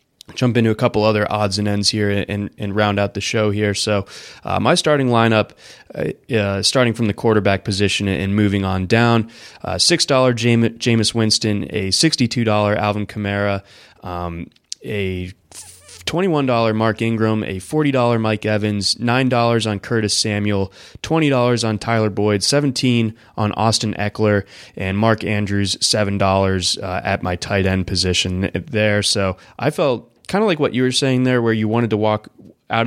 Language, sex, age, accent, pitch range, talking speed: English, male, 20-39, American, 100-115 Hz, 160 wpm